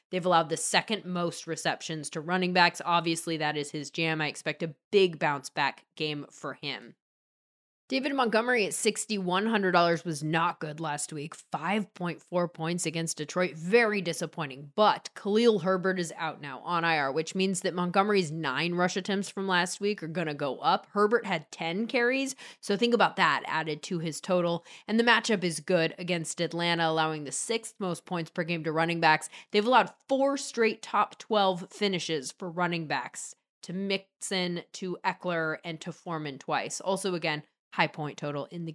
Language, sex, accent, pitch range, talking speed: English, female, American, 165-205 Hz, 180 wpm